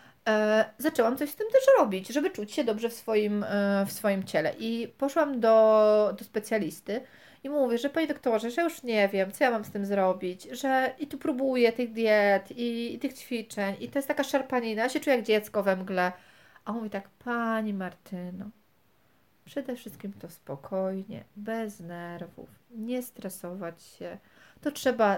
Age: 40-59